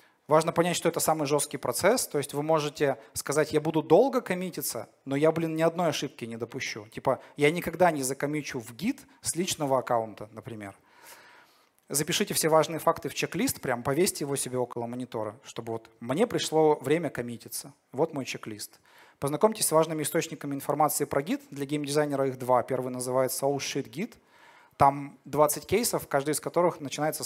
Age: 30-49